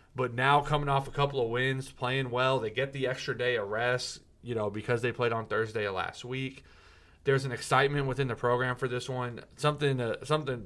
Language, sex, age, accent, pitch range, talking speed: English, male, 30-49, American, 105-130 Hz, 220 wpm